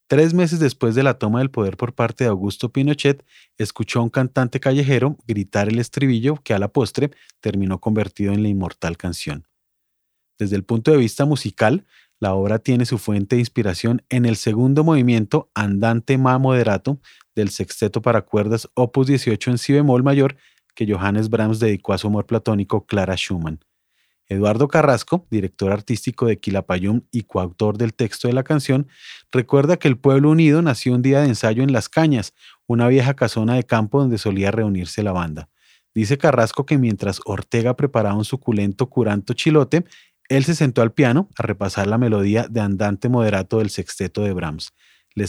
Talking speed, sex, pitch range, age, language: 180 wpm, male, 105-135 Hz, 30-49, Spanish